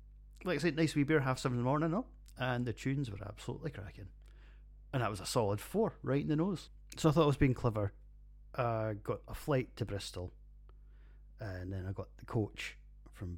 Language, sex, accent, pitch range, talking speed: English, male, British, 95-130 Hz, 220 wpm